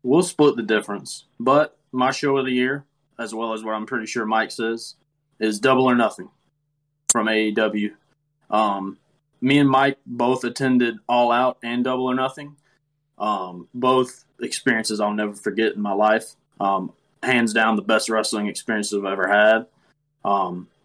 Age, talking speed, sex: 20-39, 160 wpm, male